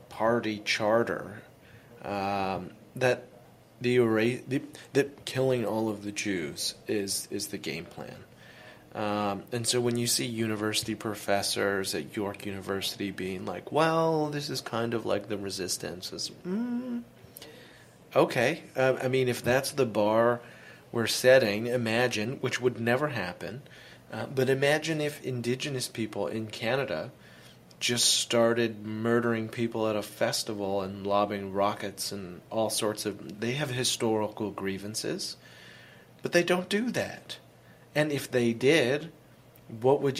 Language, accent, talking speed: English, American, 135 wpm